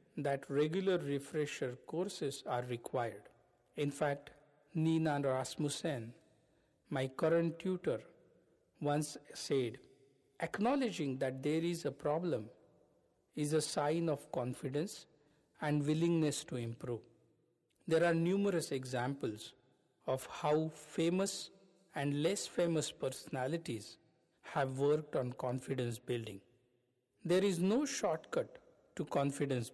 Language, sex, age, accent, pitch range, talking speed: English, male, 50-69, Indian, 135-170 Hz, 105 wpm